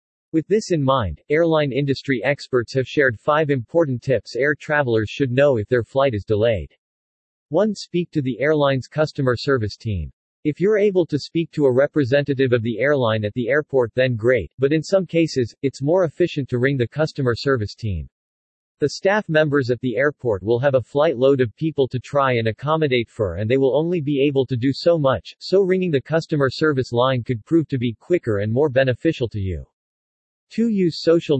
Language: English